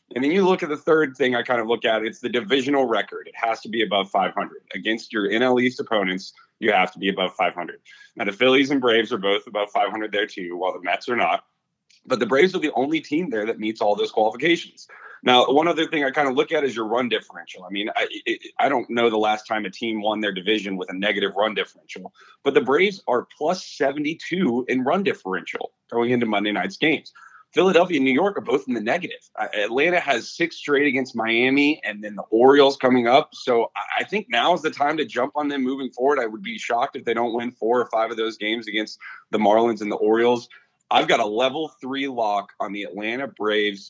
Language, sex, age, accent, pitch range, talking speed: English, male, 30-49, American, 105-140 Hz, 235 wpm